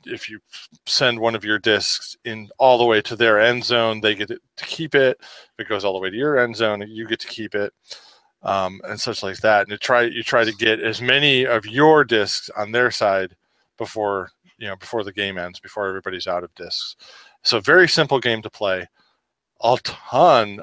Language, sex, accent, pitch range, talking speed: English, male, American, 100-120 Hz, 220 wpm